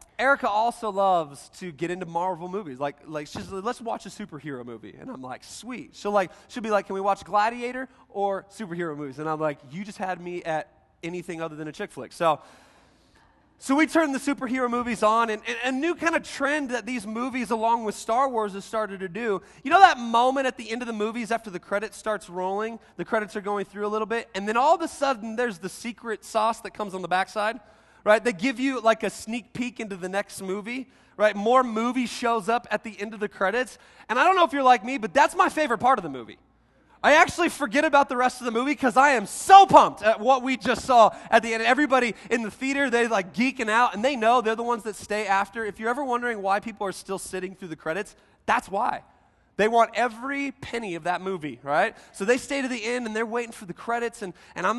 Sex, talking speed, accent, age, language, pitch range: male, 250 wpm, American, 30-49, English, 195-245 Hz